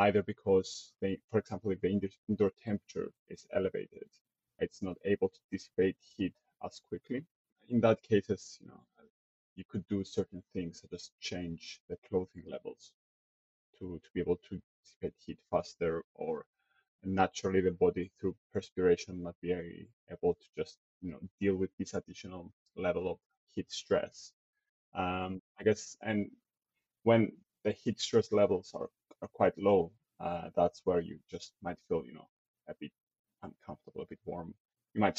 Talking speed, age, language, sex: 160 wpm, 30-49, English, male